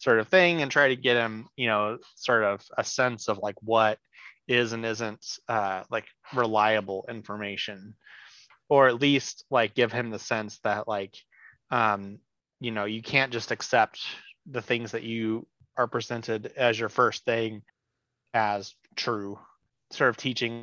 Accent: American